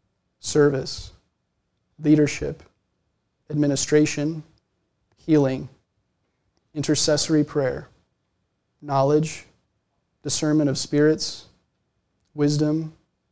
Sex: male